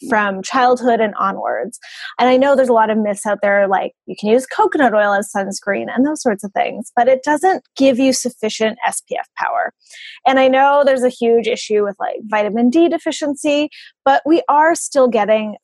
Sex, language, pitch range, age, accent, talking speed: female, English, 205-270 Hz, 20-39, American, 200 wpm